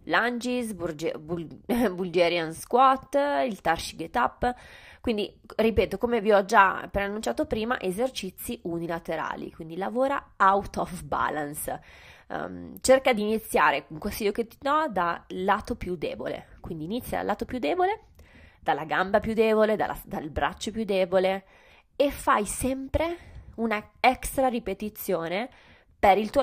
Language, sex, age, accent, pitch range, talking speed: Italian, female, 20-39, native, 170-230 Hz, 135 wpm